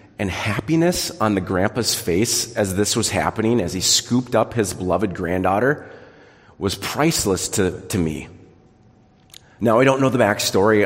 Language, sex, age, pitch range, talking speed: English, male, 30-49, 100-120 Hz, 155 wpm